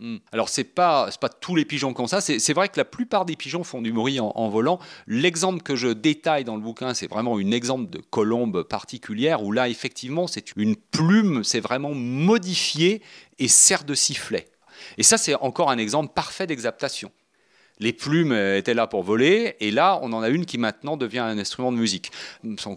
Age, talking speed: 40-59, 215 wpm